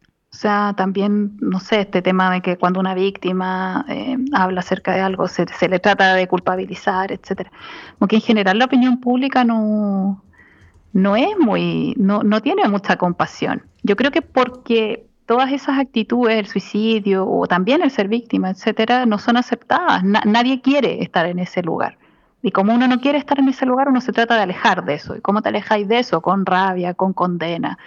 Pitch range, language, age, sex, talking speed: 185-250 Hz, Spanish, 30-49, female, 195 wpm